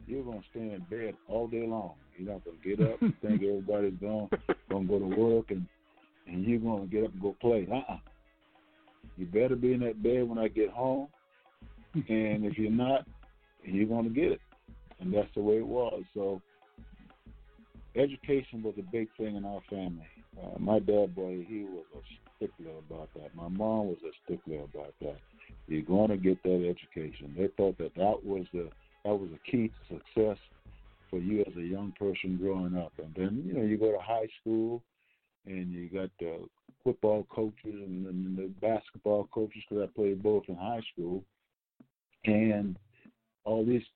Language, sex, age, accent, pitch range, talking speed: English, male, 50-69, American, 95-110 Hz, 190 wpm